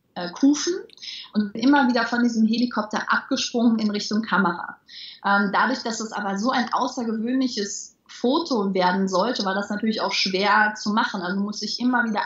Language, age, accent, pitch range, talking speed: German, 30-49, German, 200-240 Hz, 165 wpm